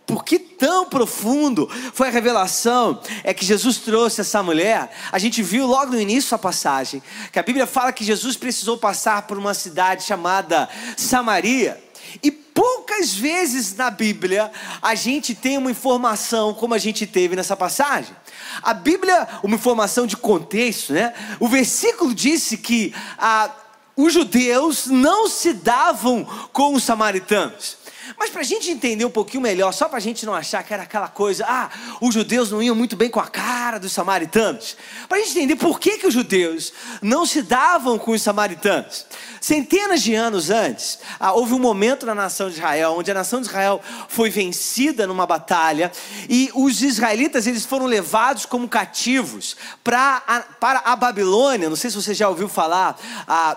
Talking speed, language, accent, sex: 175 wpm, Portuguese, Brazilian, male